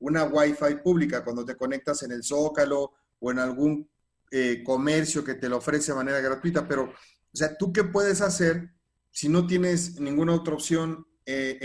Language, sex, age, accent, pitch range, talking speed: Spanish, male, 40-59, Mexican, 135-170 Hz, 180 wpm